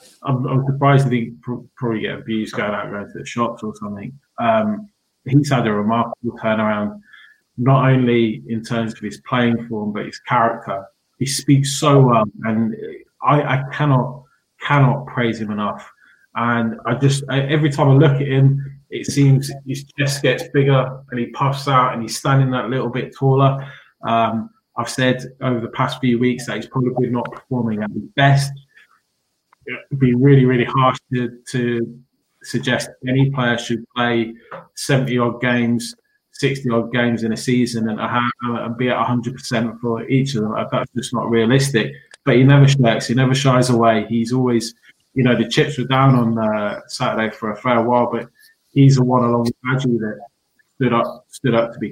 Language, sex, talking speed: English, male, 180 wpm